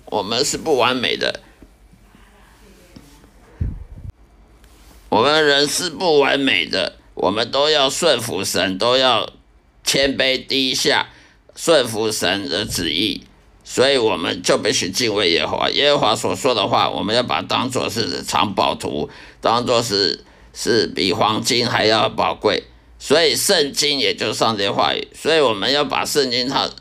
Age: 50-69